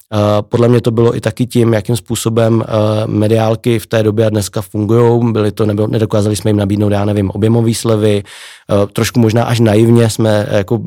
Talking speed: 175 wpm